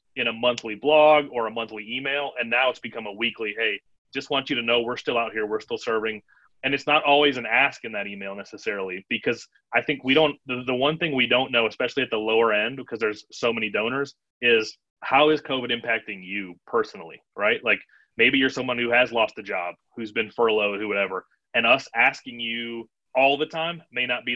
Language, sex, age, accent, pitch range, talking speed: English, male, 30-49, American, 115-135 Hz, 225 wpm